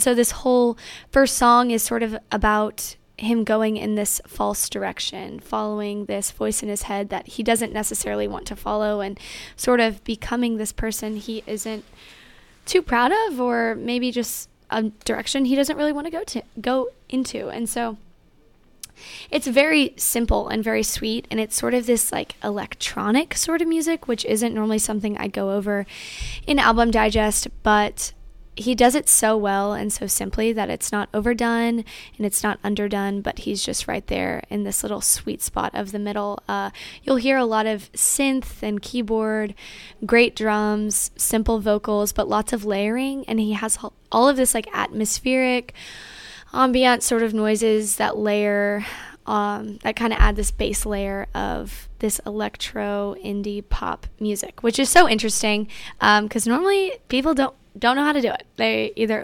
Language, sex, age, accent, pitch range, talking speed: English, female, 10-29, American, 210-245 Hz, 175 wpm